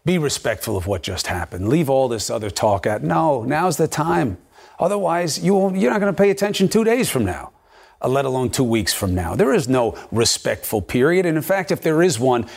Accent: American